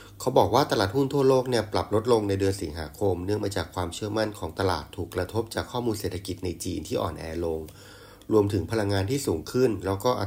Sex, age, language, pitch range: male, 30-49, Thai, 90-105 Hz